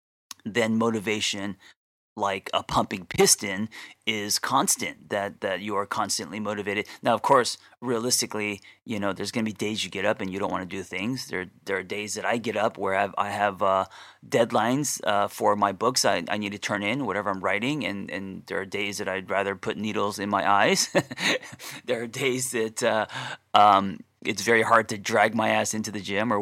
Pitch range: 100-115 Hz